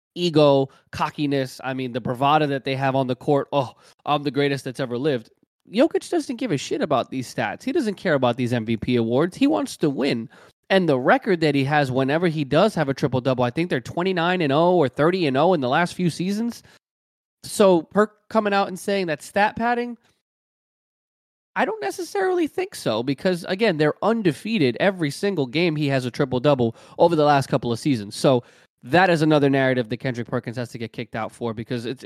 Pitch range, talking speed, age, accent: 130-195 Hz, 215 wpm, 20-39, American